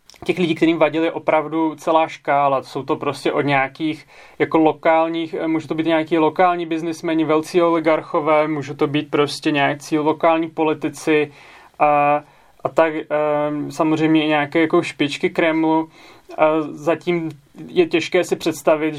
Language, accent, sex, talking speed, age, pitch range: Czech, native, male, 140 wpm, 20-39, 150-165 Hz